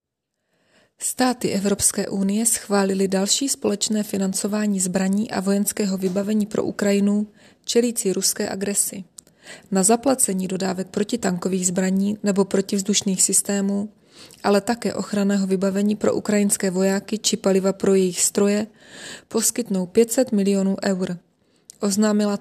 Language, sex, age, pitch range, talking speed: Czech, female, 20-39, 190-210 Hz, 110 wpm